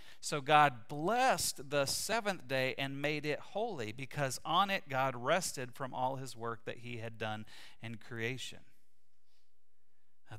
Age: 40-59